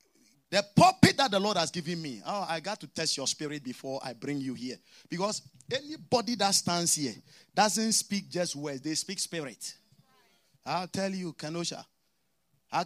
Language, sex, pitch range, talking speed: English, male, 145-195 Hz, 175 wpm